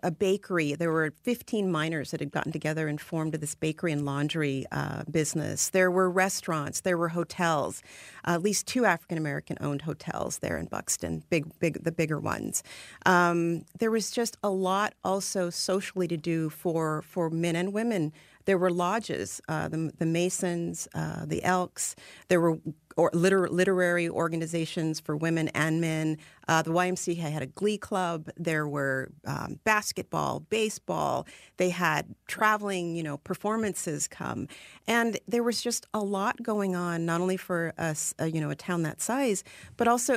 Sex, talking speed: female, 170 wpm